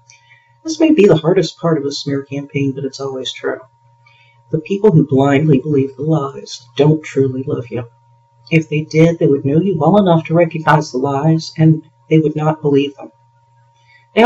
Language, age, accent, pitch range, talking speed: English, 50-69, American, 135-165 Hz, 190 wpm